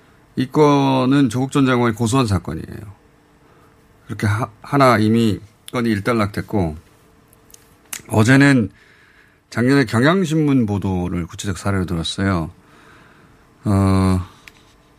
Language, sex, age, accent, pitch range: Korean, male, 30-49, native, 105-150 Hz